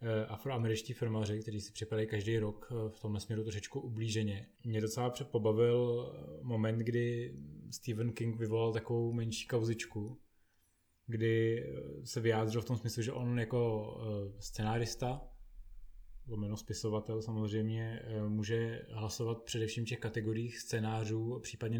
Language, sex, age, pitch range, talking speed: Czech, male, 20-39, 110-120 Hz, 120 wpm